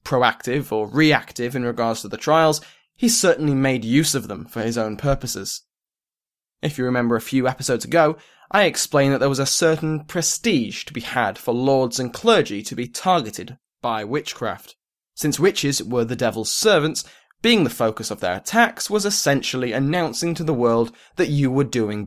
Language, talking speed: English, 180 wpm